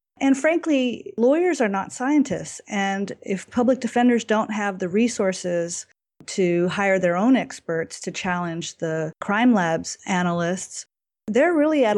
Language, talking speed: English, 140 wpm